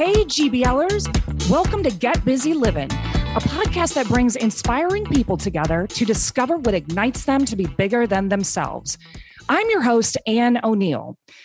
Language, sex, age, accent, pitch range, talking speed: English, female, 30-49, American, 200-300 Hz, 150 wpm